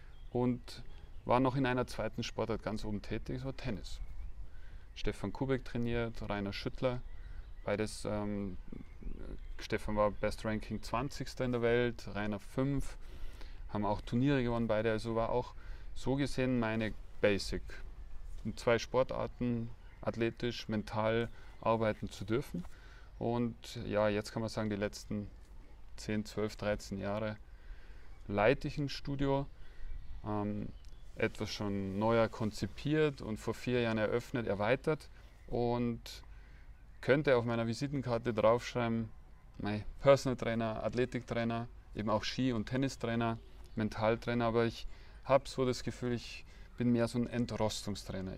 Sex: male